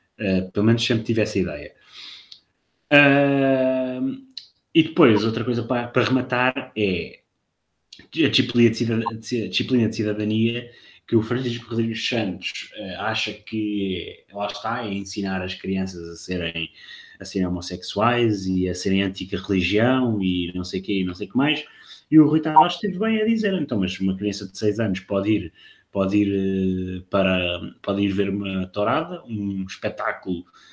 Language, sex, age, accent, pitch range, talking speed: Portuguese, male, 20-39, Portuguese, 100-140 Hz, 160 wpm